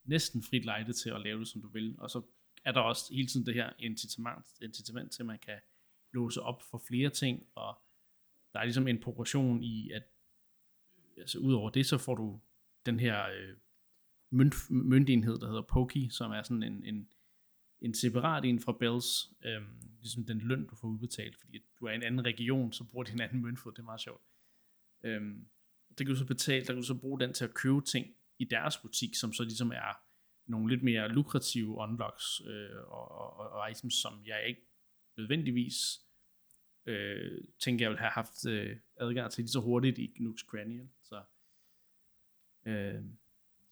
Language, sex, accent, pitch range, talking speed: Danish, male, native, 110-130 Hz, 190 wpm